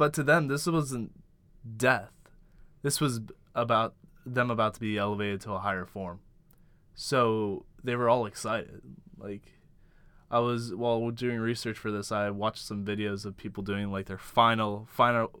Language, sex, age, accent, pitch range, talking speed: English, male, 20-39, American, 110-130 Hz, 165 wpm